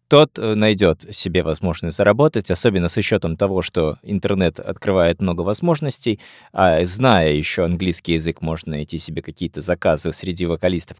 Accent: native